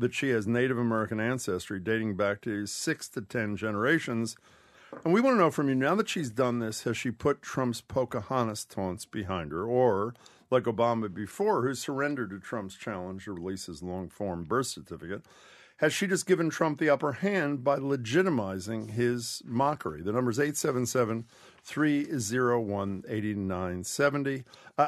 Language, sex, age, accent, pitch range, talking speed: English, male, 50-69, American, 105-140 Hz, 155 wpm